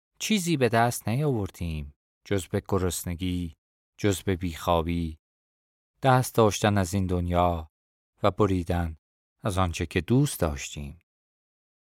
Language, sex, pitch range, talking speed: Persian, male, 80-105 Hz, 105 wpm